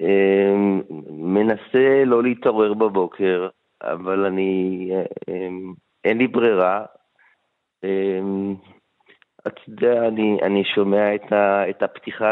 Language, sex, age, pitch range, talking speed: Hebrew, male, 30-49, 95-115 Hz, 75 wpm